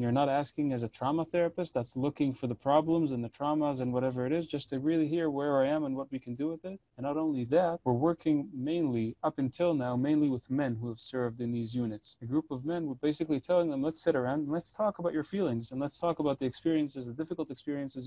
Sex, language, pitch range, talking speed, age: male, English, 125-150 Hz, 255 wpm, 30-49